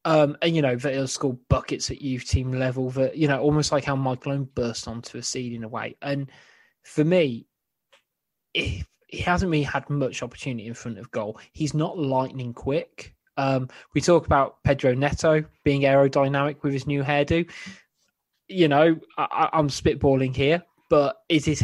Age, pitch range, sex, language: 20-39, 130-150 Hz, male, English